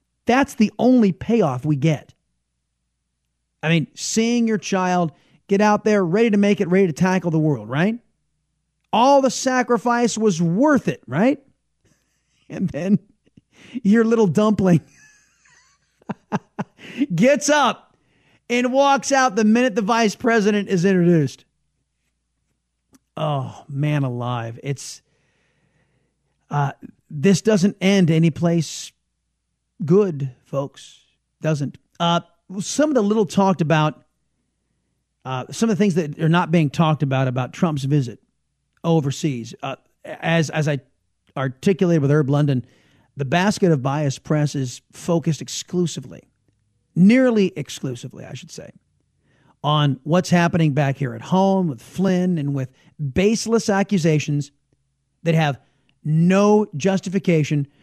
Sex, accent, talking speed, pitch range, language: male, American, 125 wpm, 140-200 Hz, English